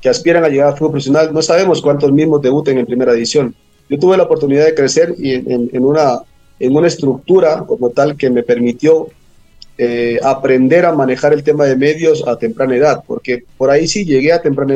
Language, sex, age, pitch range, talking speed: Spanish, male, 40-59, 125-155 Hz, 205 wpm